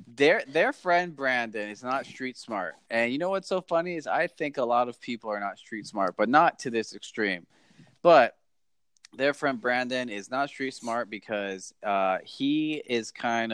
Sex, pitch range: male, 110-145 Hz